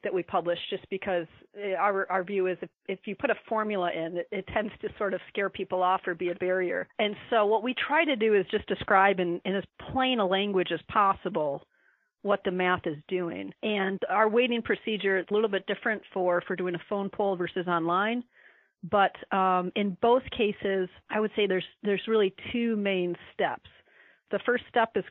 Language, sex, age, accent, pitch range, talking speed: English, female, 40-59, American, 185-220 Hz, 210 wpm